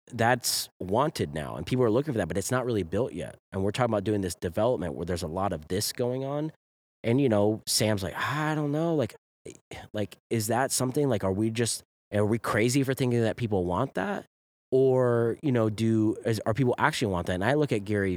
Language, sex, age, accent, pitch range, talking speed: English, male, 20-39, American, 95-125 Hz, 235 wpm